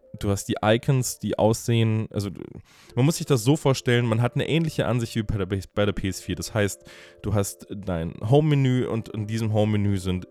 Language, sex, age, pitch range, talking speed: German, male, 20-39, 95-115 Hz, 200 wpm